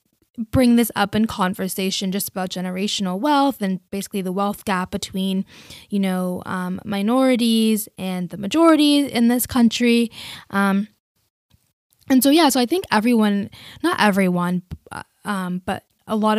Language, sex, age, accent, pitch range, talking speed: English, female, 10-29, American, 190-230 Hz, 145 wpm